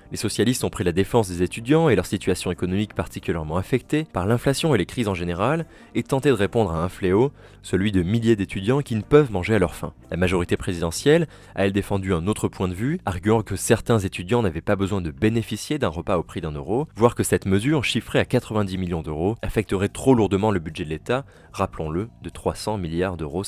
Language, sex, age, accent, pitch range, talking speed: French, male, 20-39, French, 90-115 Hz, 220 wpm